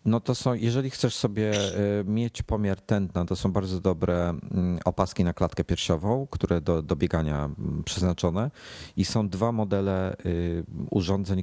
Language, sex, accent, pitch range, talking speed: Polish, male, native, 85-105 Hz, 140 wpm